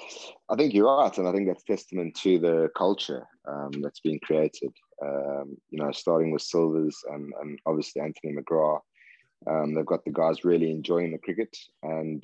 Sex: male